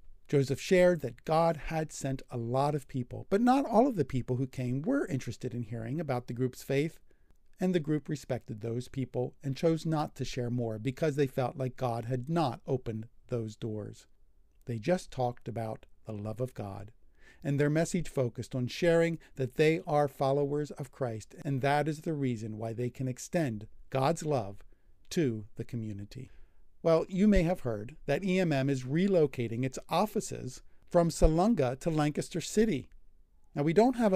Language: English